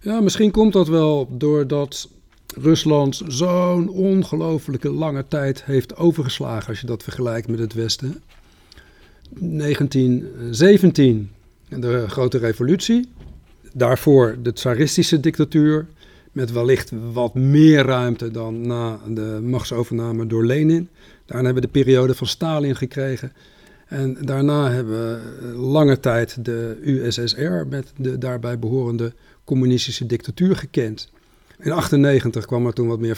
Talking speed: 125 wpm